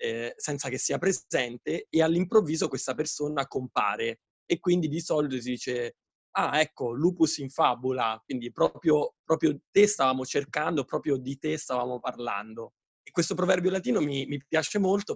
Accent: native